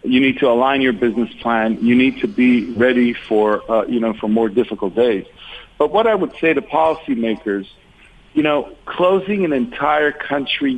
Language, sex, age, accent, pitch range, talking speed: English, male, 50-69, American, 115-145 Hz, 185 wpm